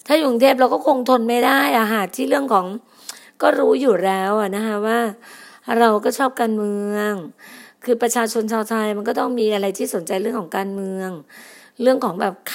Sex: female